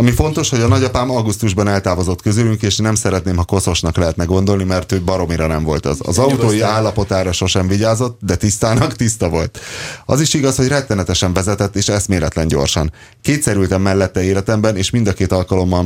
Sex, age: male, 30-49